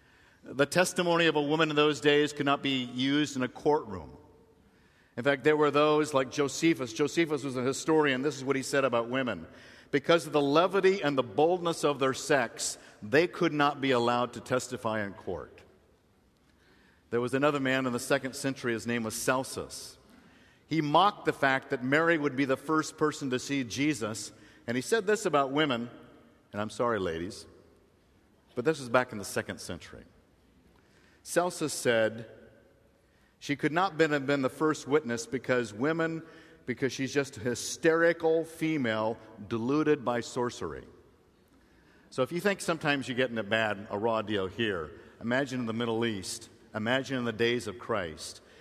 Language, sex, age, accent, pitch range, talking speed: English, male, 50-69, American, 120-155 Hz, 175 wpm